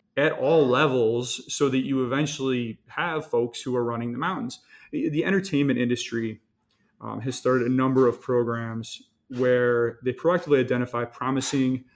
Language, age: English, 30-49